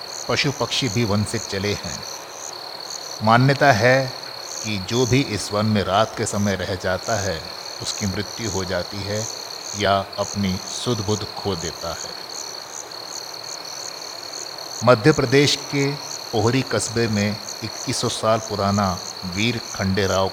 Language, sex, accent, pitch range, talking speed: Hindi, male, native, 95-115 Hz, 130 wpm